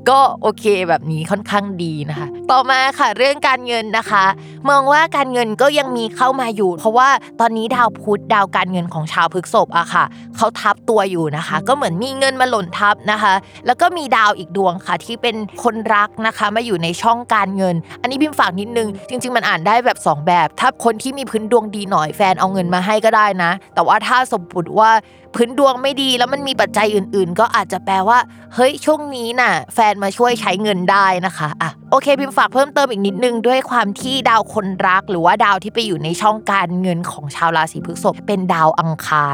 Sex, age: female, 20-39